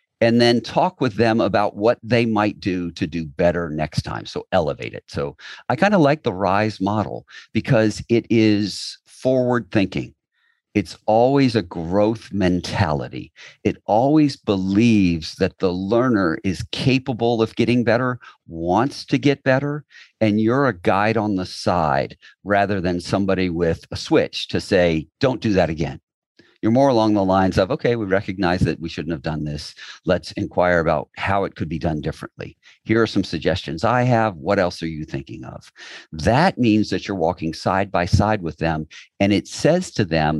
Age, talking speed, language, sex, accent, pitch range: 50-69, 180 wpm, English, male, American, 85-115 Hz